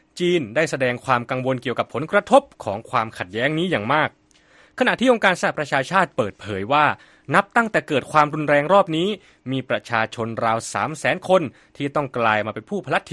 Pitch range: 115-175 Hz